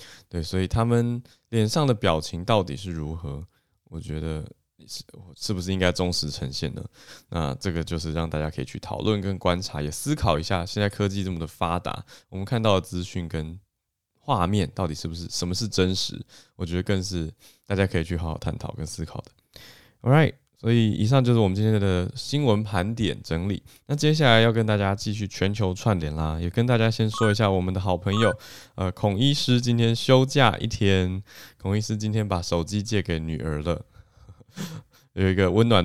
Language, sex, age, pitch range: Chinese, male, 20-39, 85-110 Hz